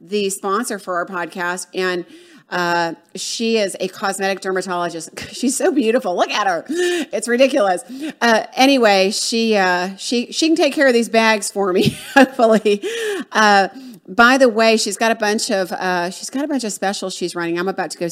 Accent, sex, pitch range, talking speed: American, female, 175-225 Hz, 190 wpm